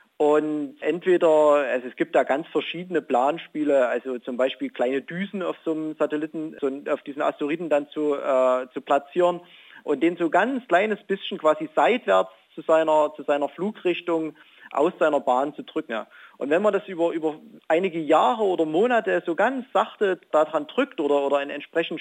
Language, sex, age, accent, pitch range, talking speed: German, male, 40-59, German, 140-170 Hz, 175 wpm